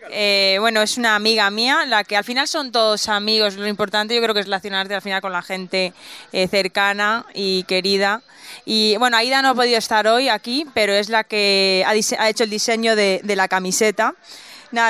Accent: Spanish